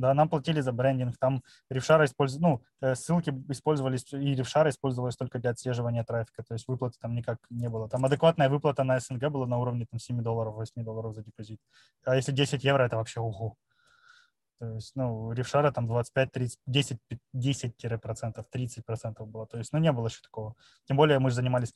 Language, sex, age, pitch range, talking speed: Russian, male, 20-39, 120-145 Hz, 195 wpm